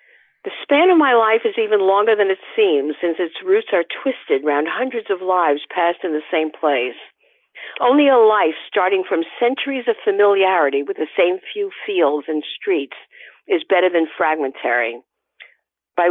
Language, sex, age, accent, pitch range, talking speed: English, female, 50-69, American, 165-275 Hz, 170 wpm